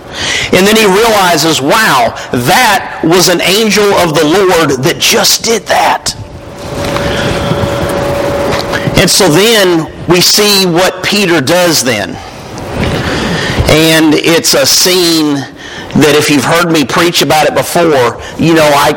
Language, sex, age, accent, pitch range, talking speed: English, male, 50-69, American, 150-180 Hz, 130 wpm